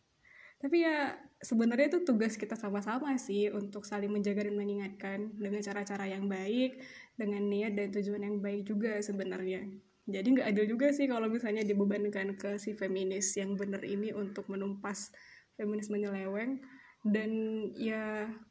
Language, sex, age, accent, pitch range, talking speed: Indonesian, female, 20-39, native, 205-245 Hz, 145 wpm